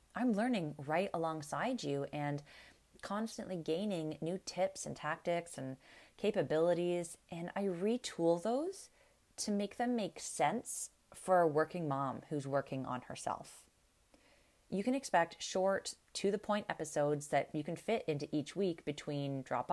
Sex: female